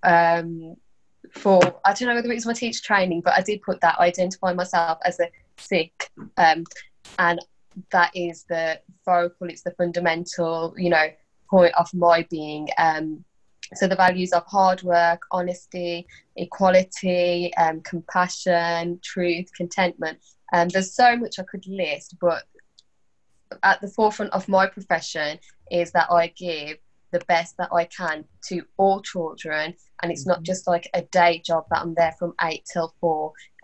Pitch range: 165-180 Hz